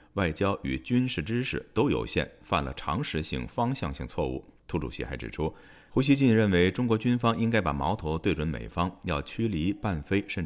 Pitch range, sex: 70-100 Hz, male